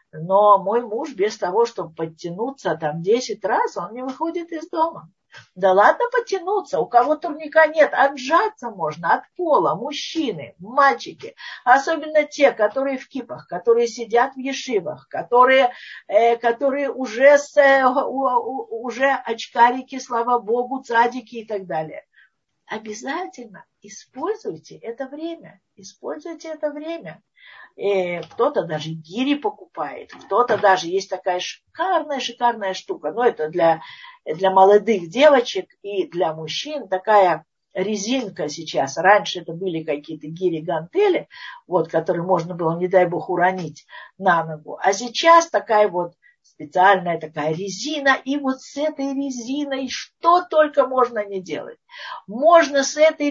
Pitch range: 190-290 Hz